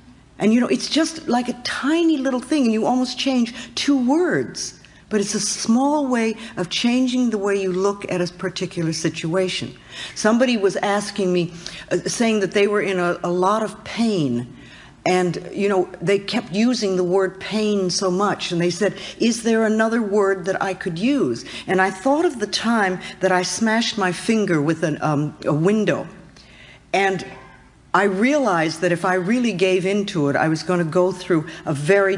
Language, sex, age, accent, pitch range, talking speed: English, female, 60-79, American, 180-230 Hz, 190 wpm